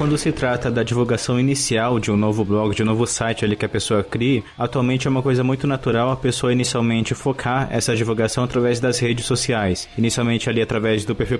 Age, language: 20-39, English